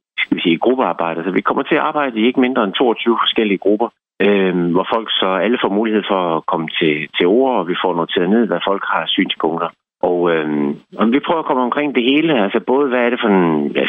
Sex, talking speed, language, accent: male, 245 wpm, Danish, native